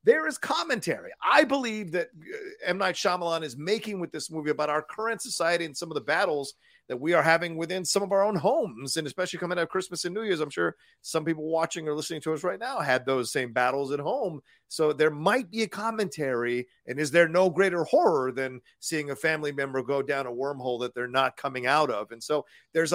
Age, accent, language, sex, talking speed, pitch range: 40-59, American, English, male, 235 wpm, 135-180 Hz